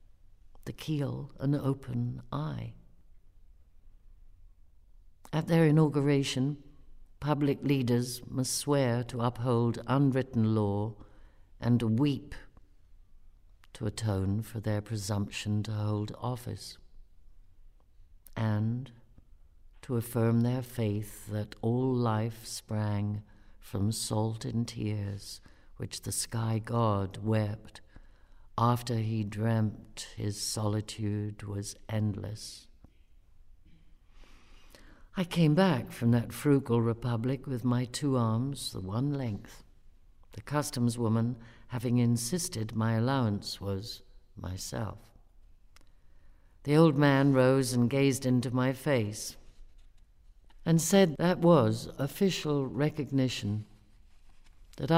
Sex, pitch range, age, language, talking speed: female, 95-130 Hz, 60-79, English, 100 wpm